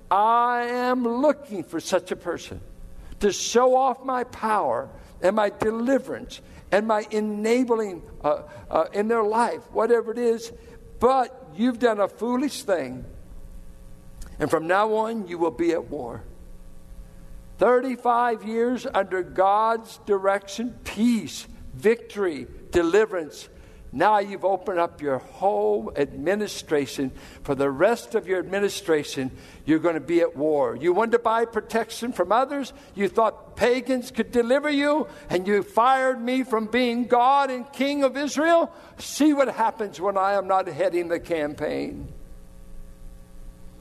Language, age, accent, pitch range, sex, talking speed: English, 60-79, American, 150-240 Hz, male, 140 wpm